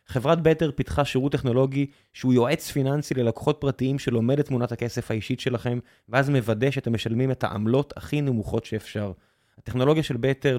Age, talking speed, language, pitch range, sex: 20-39, 160 wpm, Hebrew, 120-155 Hz, male